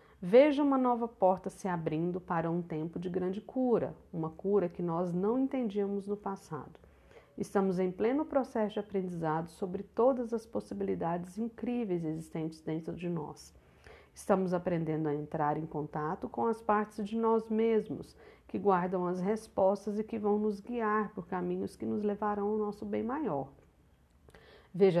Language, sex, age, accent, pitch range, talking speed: Portuguese, female, 50-69, Brazilian, 170-225 Hz, 160 wpm